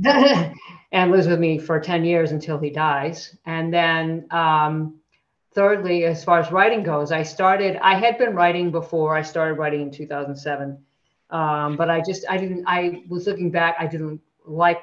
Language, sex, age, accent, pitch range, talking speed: English, female, 50-69, American, 150-175 Hz, 180 wpm